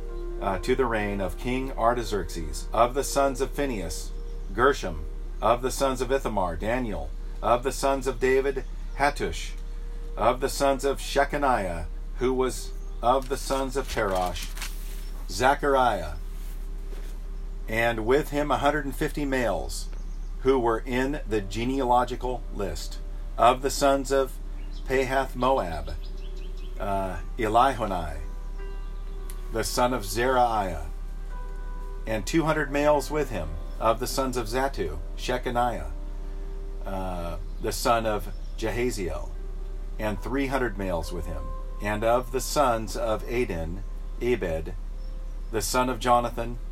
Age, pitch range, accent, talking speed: 50-69, 95-135 Hz, American, 120 wpm